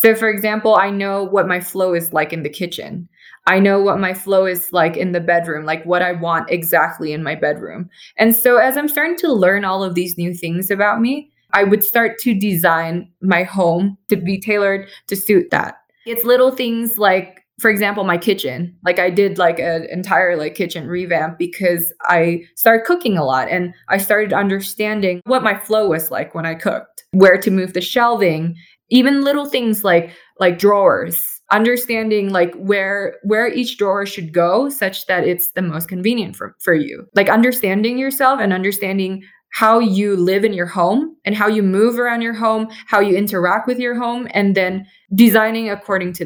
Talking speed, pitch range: 195 wpm, 175-220 Hz